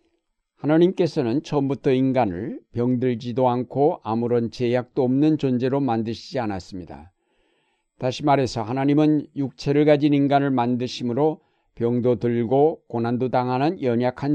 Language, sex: Korean, male